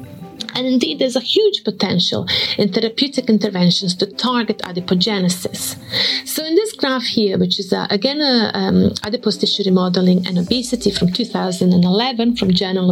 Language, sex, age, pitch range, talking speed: Croatian, female, 30-49, 190-245 Hz, 150 wpm